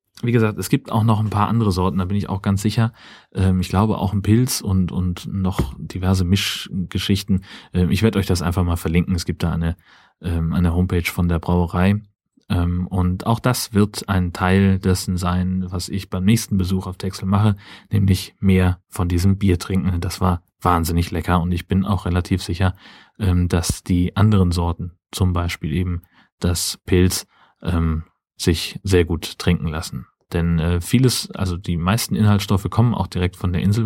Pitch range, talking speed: 85-100 Hz, 180 wpm